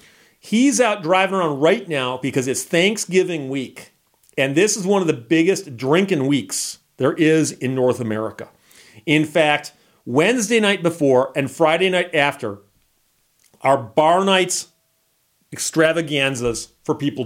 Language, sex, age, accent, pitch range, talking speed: English, male, 40-59, American, 140-190 Hz, 135 wpm